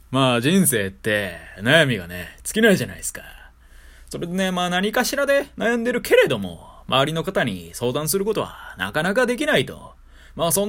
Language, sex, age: Japanese, male, 20-39